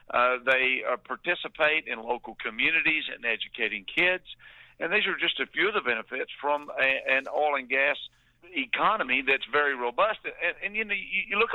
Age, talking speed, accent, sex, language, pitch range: 50-69, 190 wpm, American, male, English, 125-160 Hz